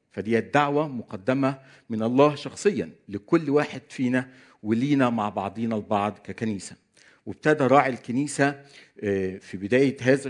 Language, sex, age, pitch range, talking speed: Arabic, male, 50-69, 115-145 Hz, 115 wpm